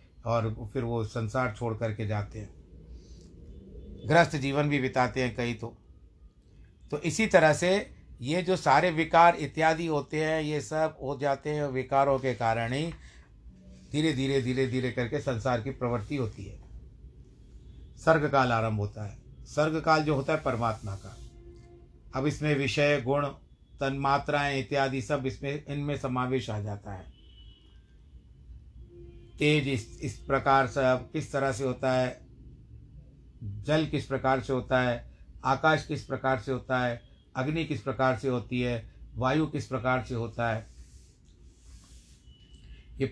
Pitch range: 105-145 Hz